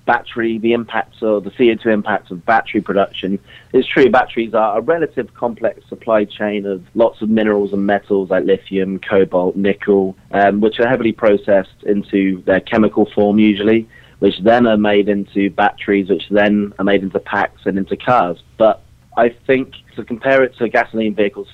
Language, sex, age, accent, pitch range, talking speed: English, male, 30-49, British, 100-110 Hz, 175 wpm